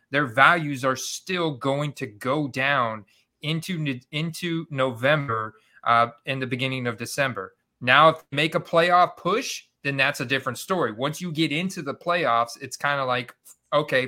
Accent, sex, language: American, male, English